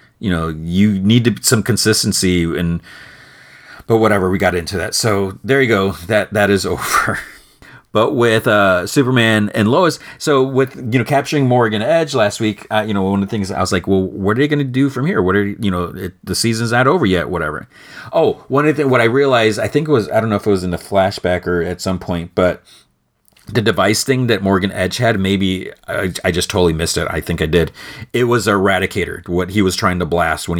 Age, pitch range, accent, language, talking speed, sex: 30-49, 90-110 Hz, American, English, 235 wpm, male